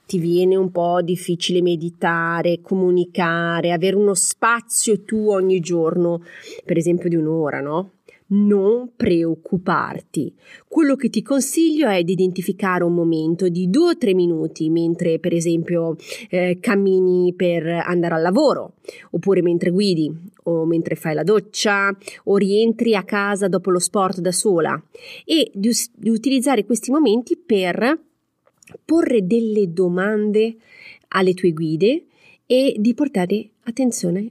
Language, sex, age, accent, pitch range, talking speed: Italian, female, 30-49, native, 170-220 Hz, 135 wpm